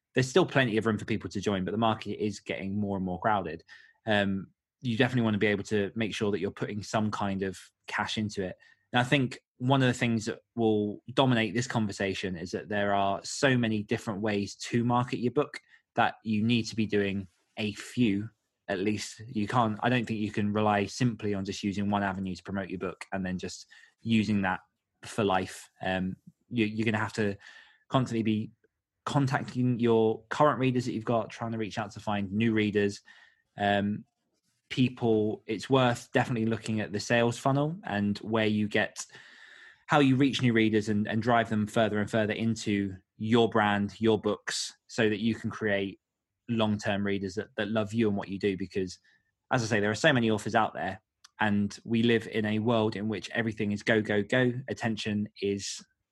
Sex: male